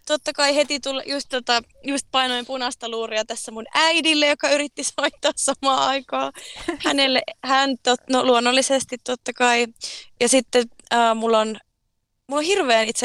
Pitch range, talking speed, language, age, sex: 210-265 Hz, 145 wpm, Finnish, 20-39, female